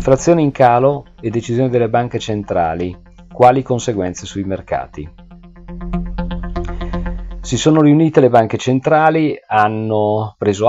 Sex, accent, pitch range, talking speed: male, native, 90-115 Hz, 110 wpm